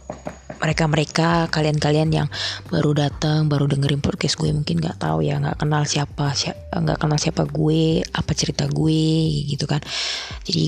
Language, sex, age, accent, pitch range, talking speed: Indonesian, female, 20-39, native, 140-160 Hz, 165 wpm